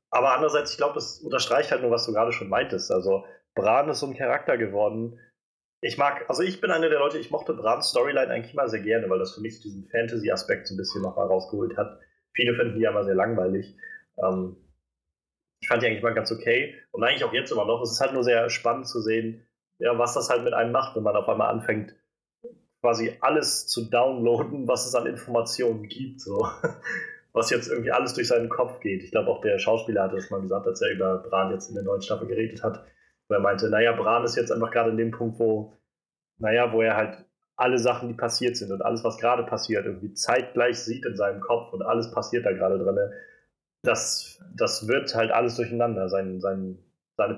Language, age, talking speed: German, 30-49, 220 wpm